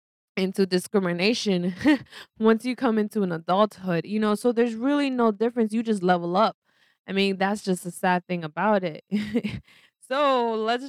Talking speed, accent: 165 wpm, American